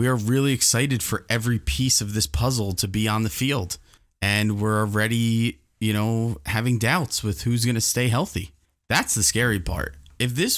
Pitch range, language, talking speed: 100-125 Hz, English, 195 wpm